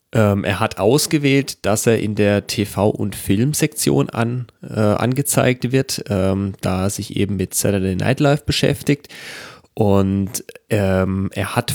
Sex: male